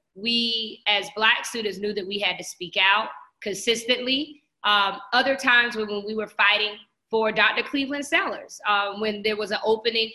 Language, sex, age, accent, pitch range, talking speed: English, female, 20-39, American, 200-235 Hz, 170 wpm